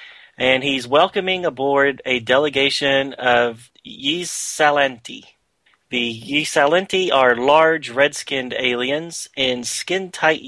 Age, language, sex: 30-49, English, male